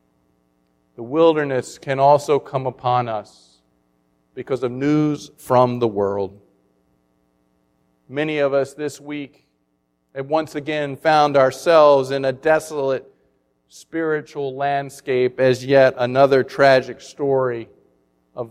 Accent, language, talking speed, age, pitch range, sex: American, English, 110 wpm, 50-69, 100-155 Hz, male